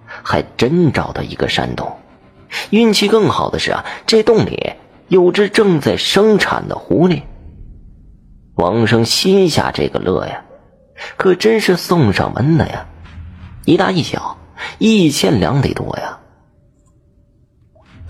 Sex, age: male, 30-49